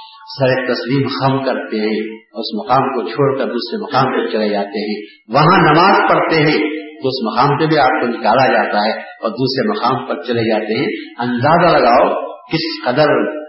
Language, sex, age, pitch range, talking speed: Urdu, male, 50-69, 120-160 Hz, 180 wpm